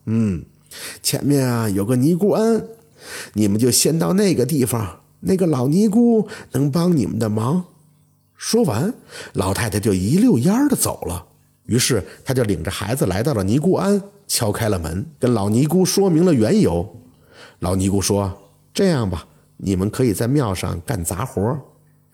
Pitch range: 105-165 Hz